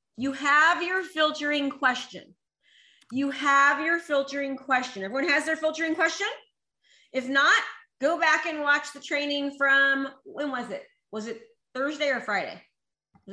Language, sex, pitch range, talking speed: English, female, 225-295 Hz, 150 wpm